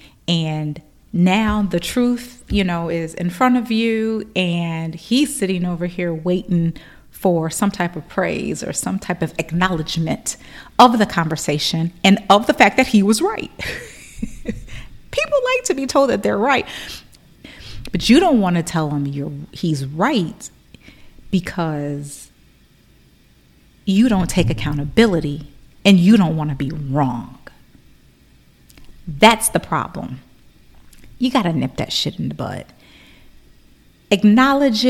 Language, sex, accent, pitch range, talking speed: English, female, American, 170-240 Hz, 140 wpm